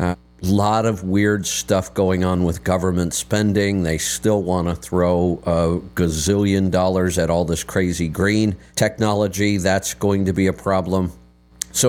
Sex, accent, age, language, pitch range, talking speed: male, American, 50-69, English, 85-110 Hz, 150 wpm